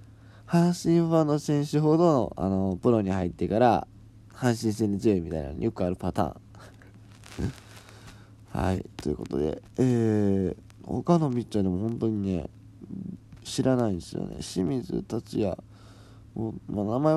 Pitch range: 100-115 Hz